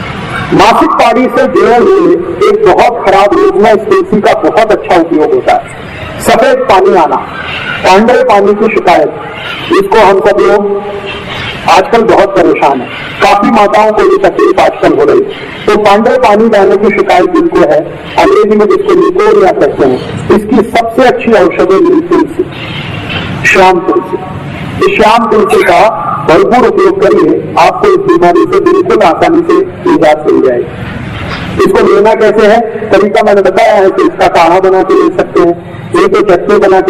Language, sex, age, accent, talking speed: Hindi, male, 50-69, native, 125 wpm